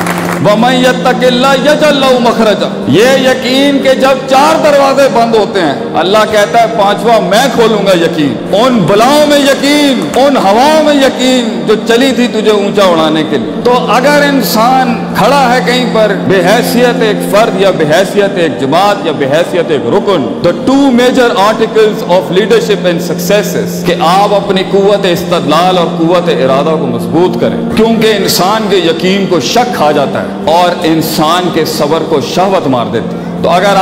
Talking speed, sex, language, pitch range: 170 wpm, male, Urdu, 195-250 Hz